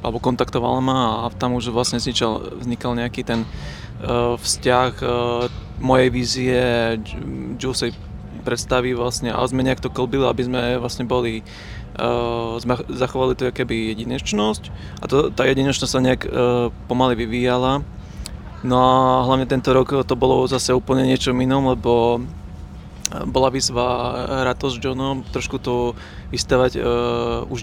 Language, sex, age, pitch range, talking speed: Slovak, male, 20-39, 120-130 Hz, 140 wpm